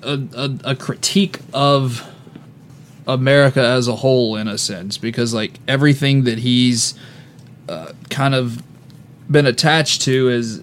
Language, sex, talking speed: English, male, 135 wpm